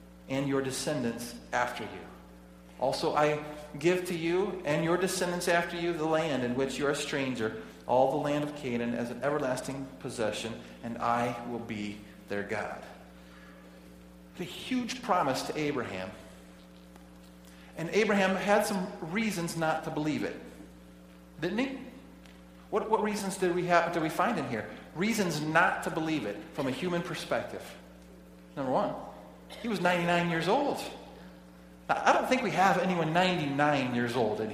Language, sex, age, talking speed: English, male, 40-59, 160 wpm